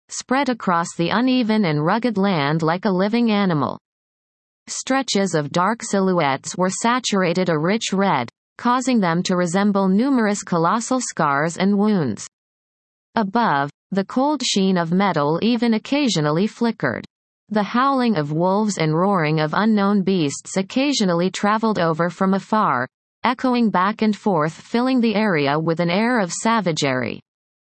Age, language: 30-49, English